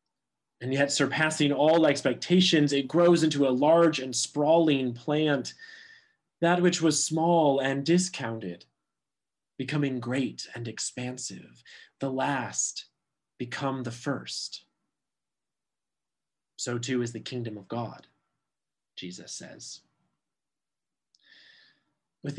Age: 30-49